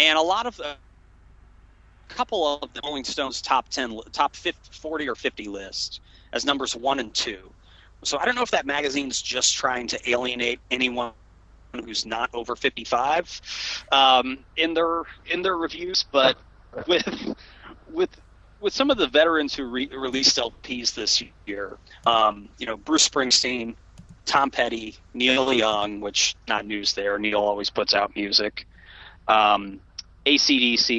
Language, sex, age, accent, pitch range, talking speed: English, male, 30-49, American, 100-145 Hz, 145 wpm